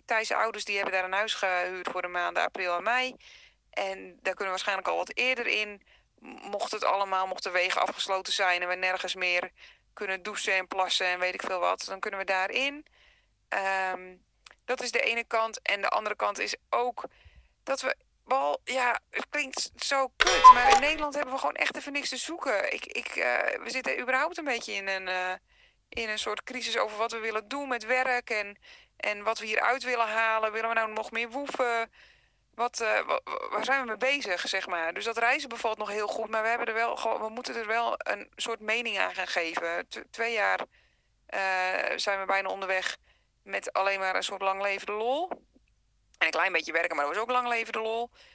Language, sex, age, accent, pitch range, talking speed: Dutch, female, 20-39, Dutch, 190-250 Hz, 210 wpm